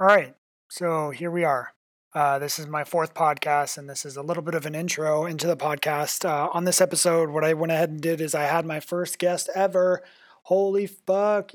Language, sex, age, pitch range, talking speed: English, male, 30-49, 150-175 Hz, 225 wpm